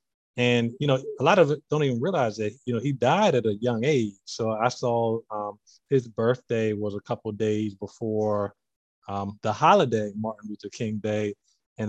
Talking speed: 195 wpm